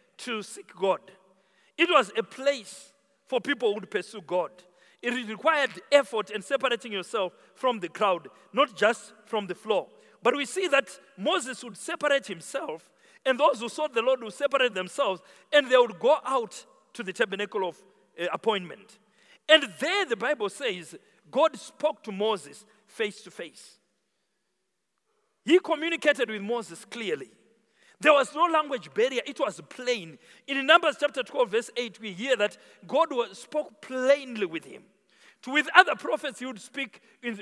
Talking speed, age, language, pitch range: 160 wpm, 50-69, English, 215-290 Hz